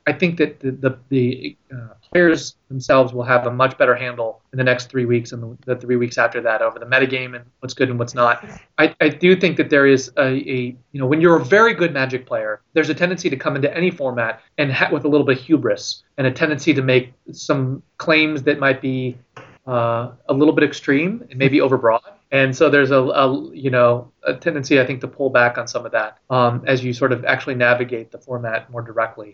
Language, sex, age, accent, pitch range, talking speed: English, male, 30-49, American, 125-160 Hz, 240 wpm